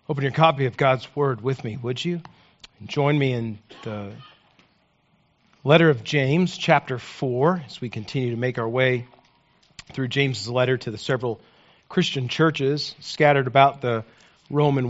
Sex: male